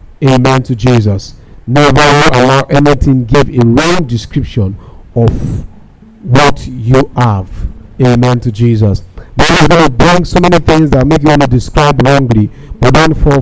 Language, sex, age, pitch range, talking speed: English, male, 50-69, 120-160 Hz, 155 wpm